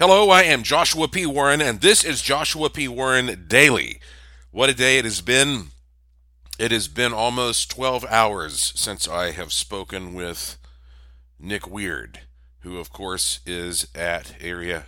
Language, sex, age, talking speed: English, male, 40-59, 155 wpm